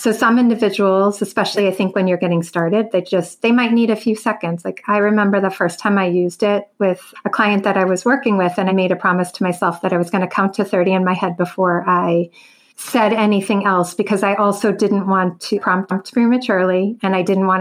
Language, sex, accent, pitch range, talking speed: English, female, American, 185-210 Hz, 240 wpm